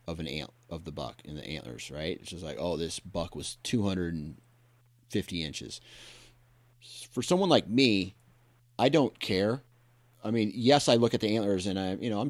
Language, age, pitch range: English, 30-49, 95-120 Hz